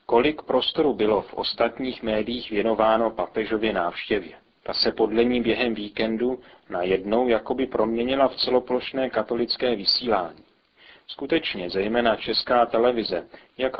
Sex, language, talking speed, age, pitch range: male, Czech, 115 wpm, 40-59, 110-125 Hz